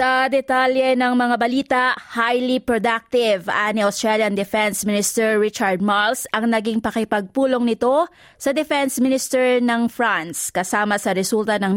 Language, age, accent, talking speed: English, 20-39, Filipino, 135 wpm